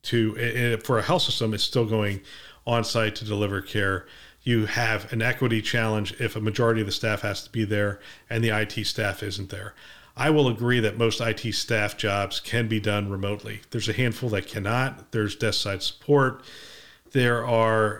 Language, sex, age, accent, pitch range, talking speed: English, male, 40-59, American, 105-120 Hz, 185 wpm